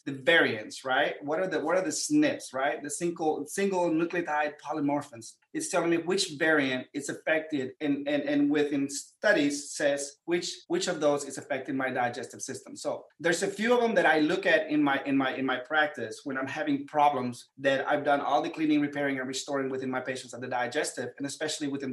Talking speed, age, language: 210 wpm, 30-49, English